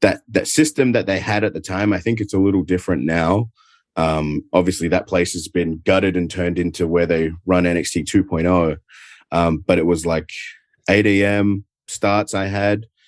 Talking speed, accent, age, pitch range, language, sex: 190 wpm, Australian, 30-49, 85-100 Hz, English, male